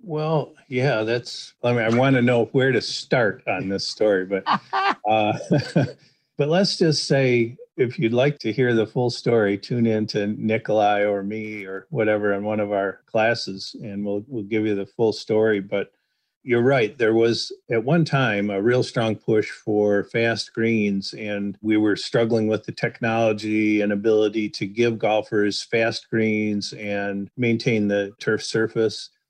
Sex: male